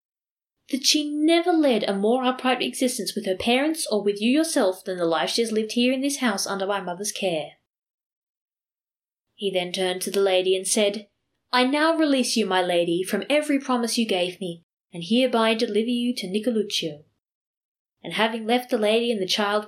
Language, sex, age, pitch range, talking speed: English, female, 20-39, 190-245 Hz, 190 wpm